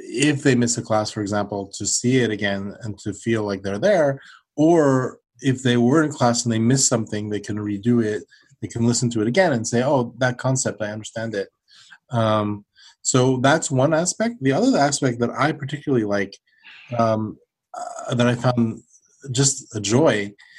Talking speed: 190 wpm